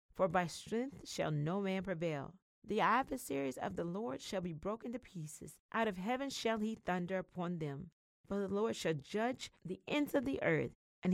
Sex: female